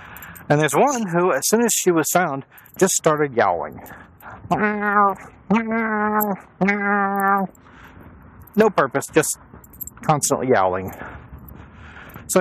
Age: 40-59